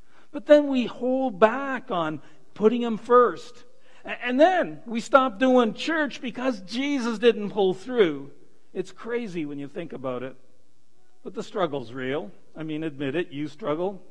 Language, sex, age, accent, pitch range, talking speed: English, male, 60-79, American, 160-230 Hz, 155 wpm